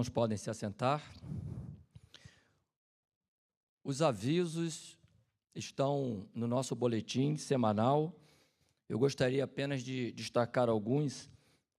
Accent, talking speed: Brazilian, 80 wpm